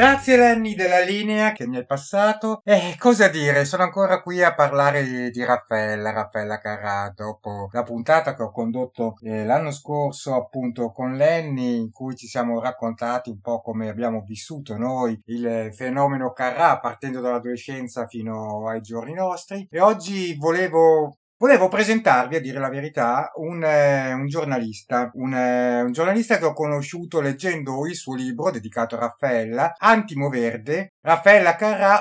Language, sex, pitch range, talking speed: Italian, male, 125-170 Hz, 155 wpm